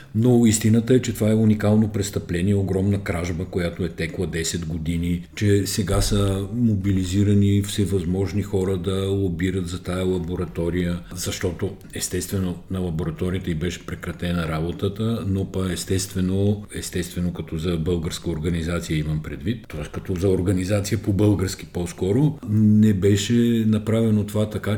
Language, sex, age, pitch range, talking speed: Bulgarian, male, 50-69, 90-110 Hz, 135 wpm